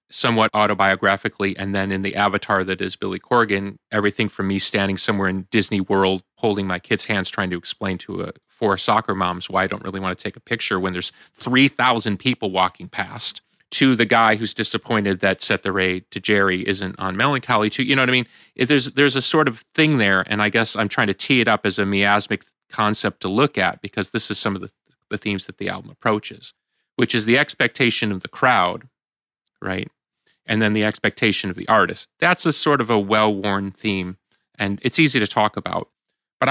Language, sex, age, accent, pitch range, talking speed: English, male, 30-49, American, 95-120 Hz, 215 wpm